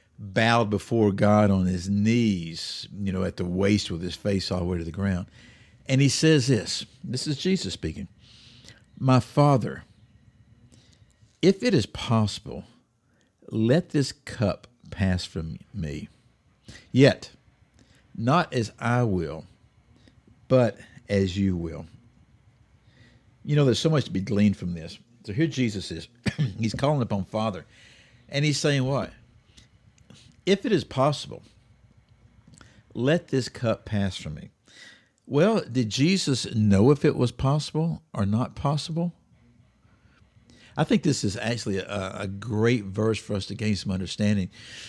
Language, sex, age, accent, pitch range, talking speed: English, male, 60-79, American, 105-125 Hz, 145 wpm